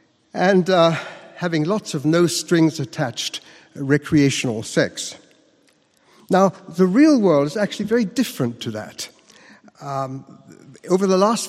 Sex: male